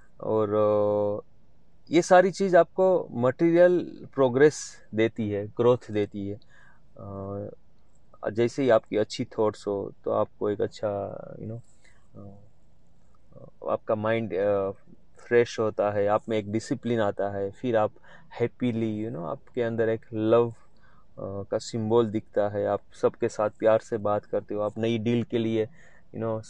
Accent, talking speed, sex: native, 155 wpm, male